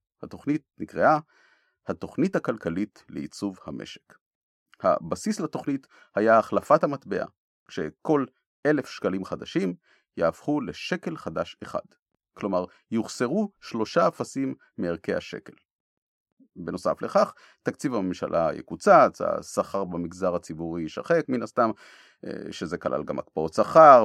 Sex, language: male, Hebrew